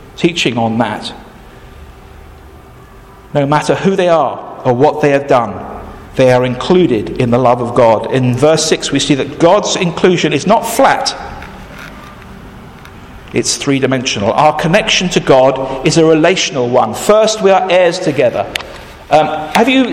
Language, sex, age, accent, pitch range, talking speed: English, male, 50-69, British, 150-220 Hz, 155 wpm